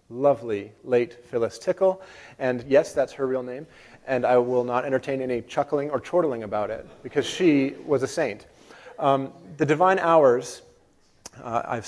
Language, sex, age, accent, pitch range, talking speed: English, male, 30-49, American, 120-155 Hz, 160 wpm